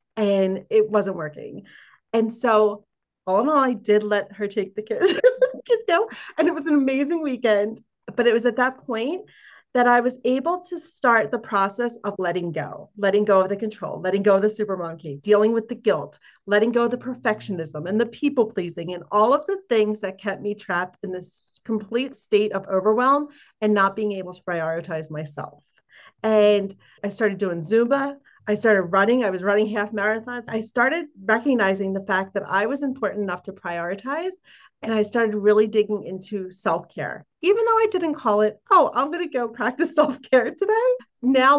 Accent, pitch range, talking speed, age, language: American, 195-250 Hz, 195 wpm, 40-59, English